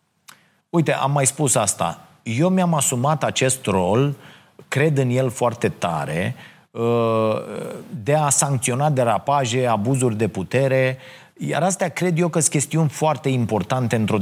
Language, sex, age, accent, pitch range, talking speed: Romanian, male, 30-49, native, 115-155 Hz, 135 wpm